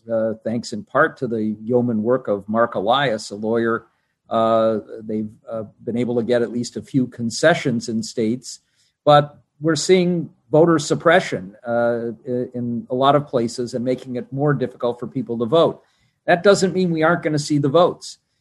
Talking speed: 185 wpm